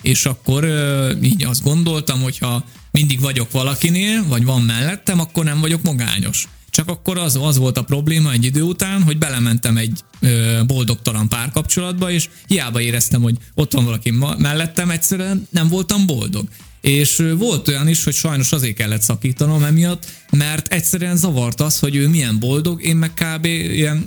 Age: 20-39